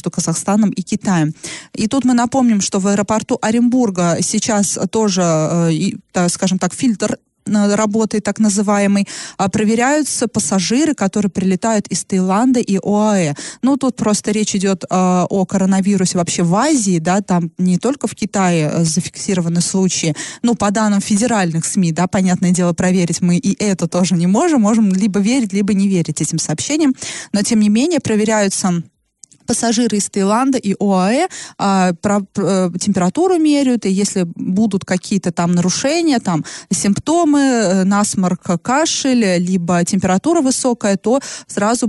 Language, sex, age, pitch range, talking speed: Russian, female, 20-39, 185-230 Hz, 140 wpm